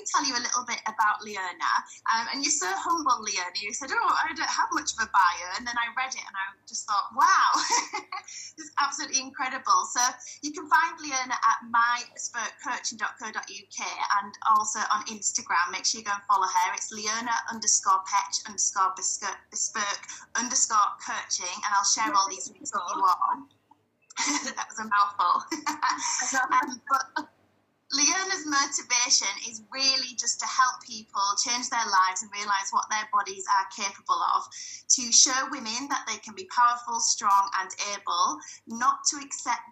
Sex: female